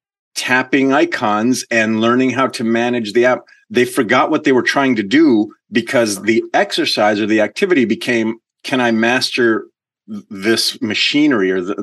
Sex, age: male, 30-49